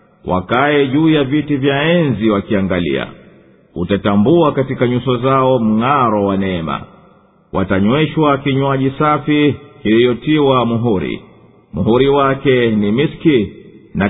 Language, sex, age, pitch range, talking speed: Swahili, male, 50-69, 110-145 Hz, 100 wpm